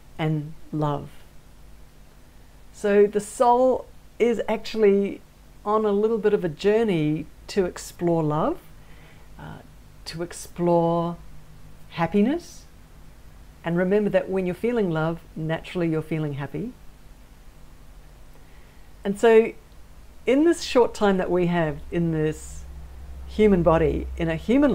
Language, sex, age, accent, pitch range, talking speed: English, female, 60-79, Australian, 155-220 Hz, 115 wpm